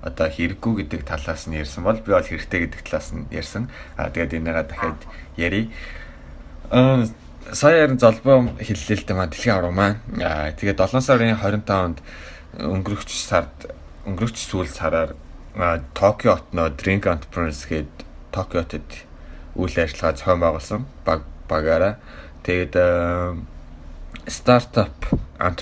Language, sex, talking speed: English, male, 95 wpm